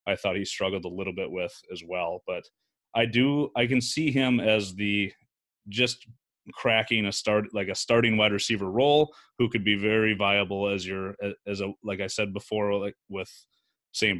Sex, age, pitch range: male, 30-49, 100-120 Hz